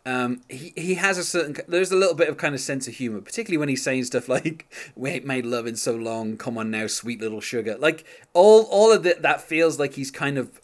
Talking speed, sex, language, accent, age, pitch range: 260 wpm, male, English, British, 30-49, 115-145 Hz